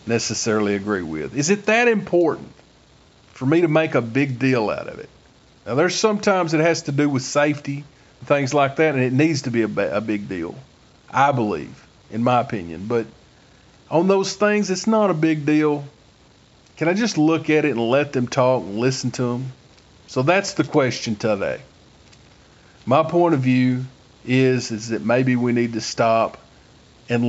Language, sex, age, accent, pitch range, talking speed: English, male, 40-59, American, 120-160 Hz, 185 wpm